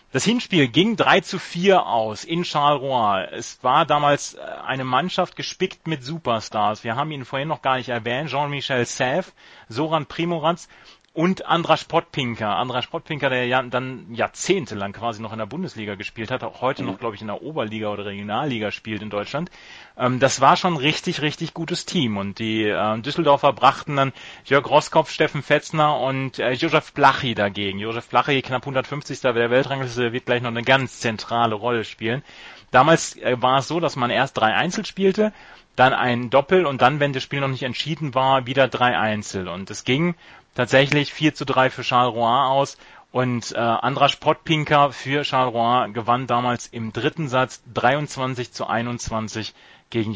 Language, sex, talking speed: German, male, 180 wpm